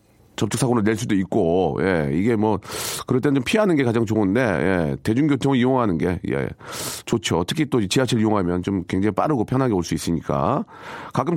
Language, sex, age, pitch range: Korean, male, 40-59, 110-145 Hz